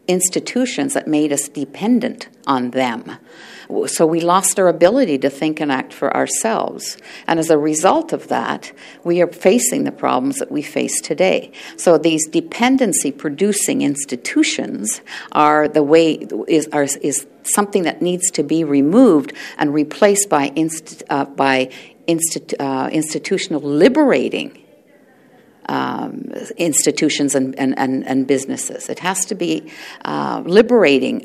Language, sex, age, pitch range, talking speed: English, female, 50-69, 145-210 Hz, 130 wpm